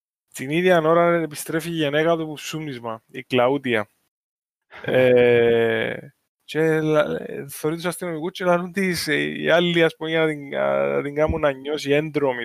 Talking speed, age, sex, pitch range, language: 110 wpm, 20-39, male, 120-165 Hz, Greek